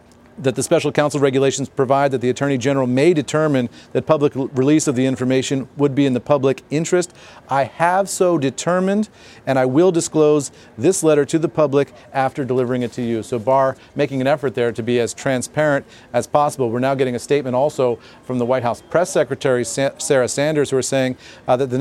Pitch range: 125-150 Hz